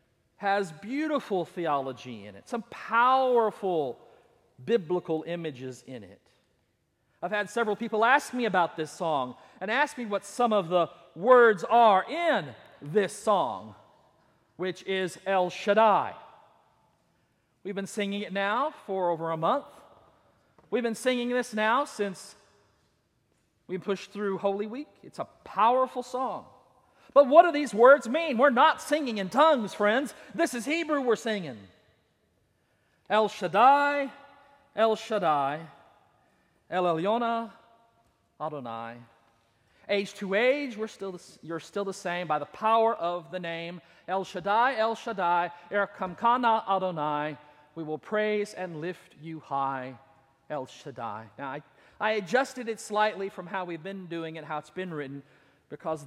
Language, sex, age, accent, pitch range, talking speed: English, male, 40-59, American, 170-230 Hz, 140 wpm